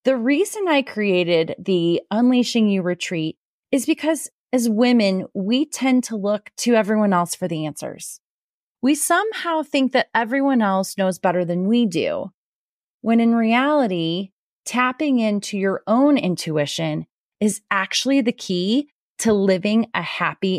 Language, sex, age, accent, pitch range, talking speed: English, female, 30-49, American, 175-235 Hz, 145 wpm